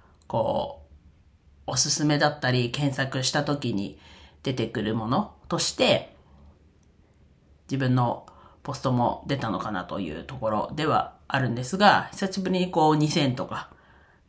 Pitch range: 110-160 Hz